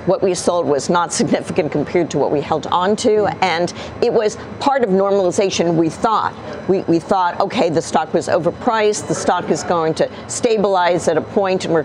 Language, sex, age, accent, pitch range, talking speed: English, female, 50-69, American, 175-215 Hz, 205 wpm